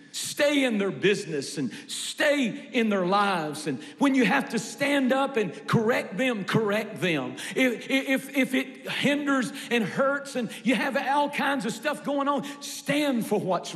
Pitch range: 200-270 Hz